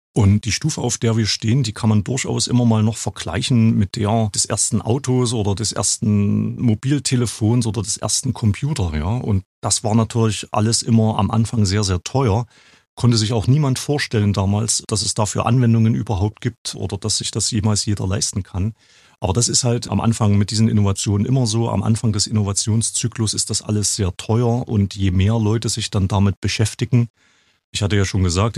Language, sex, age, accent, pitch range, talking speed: German, male, 40-59, German, 100-115 Hz, 195 wpm